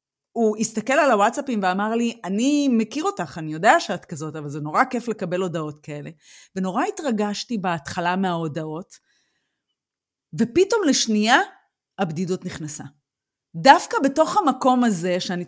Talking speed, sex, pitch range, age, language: 130 wpm, female, 185-270 Hz, 30-49, Hebrew